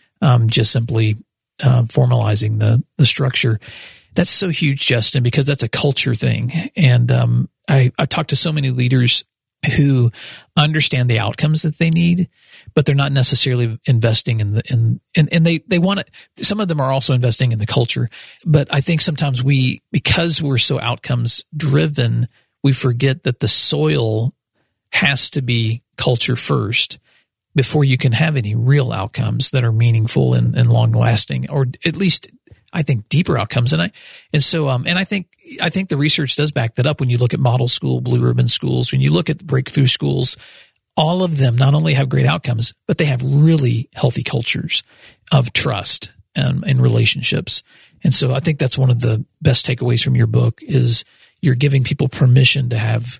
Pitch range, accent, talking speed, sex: 120-150 Hz, American, 190 wpm, male